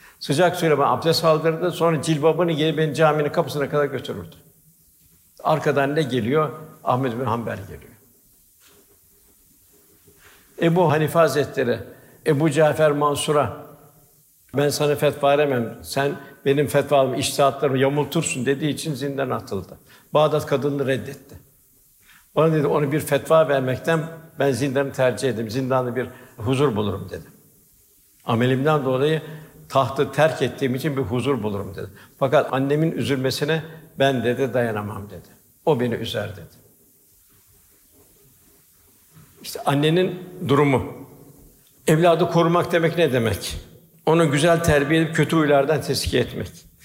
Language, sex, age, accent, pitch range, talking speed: Turkish, male, 60-79, native, 135-160 Hz, 125 wpm